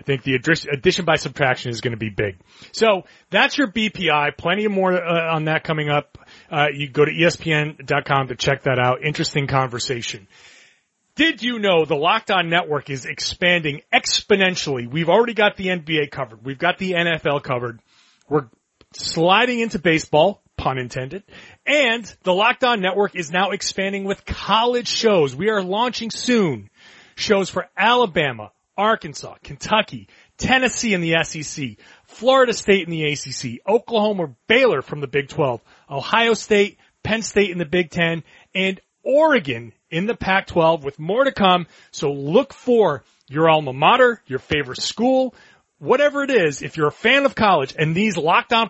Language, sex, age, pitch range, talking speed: English, male, 30-49, 145-215 Hz, 160 wpm